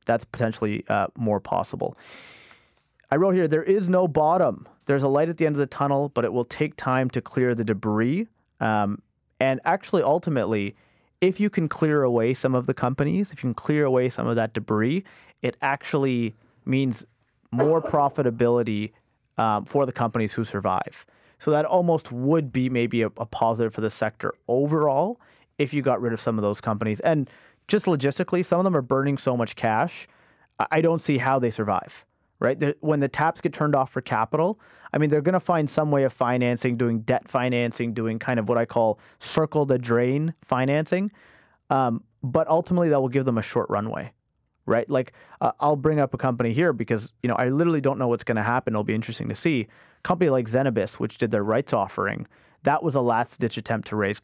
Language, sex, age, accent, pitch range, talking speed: English, male, 30-49, American, 115-150 Hz, 205 wpm